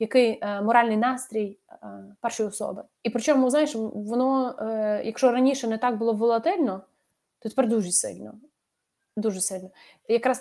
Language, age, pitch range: Ukrainian, 20-39, 210-255 Hz